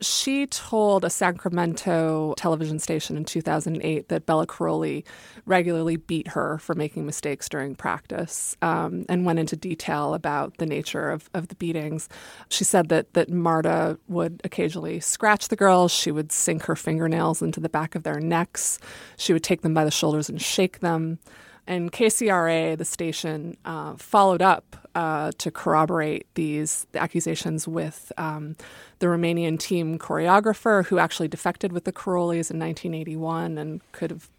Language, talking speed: English, 160 wpm